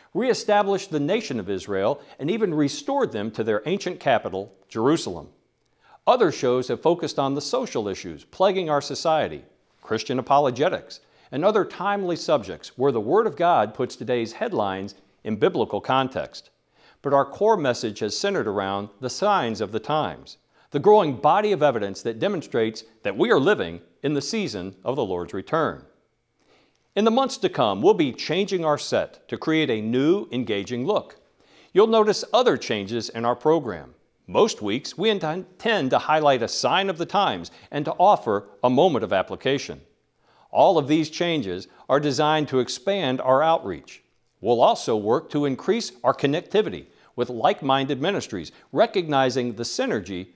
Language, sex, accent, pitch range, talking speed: English, male, American, 120-185 Hz, 160 wpm